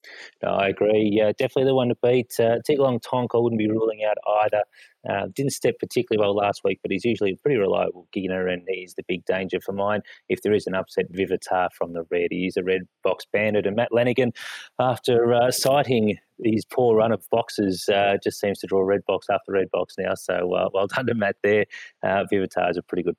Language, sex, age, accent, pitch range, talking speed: English, male, 30-49, Australian, 95-120 Hz, 230 wpm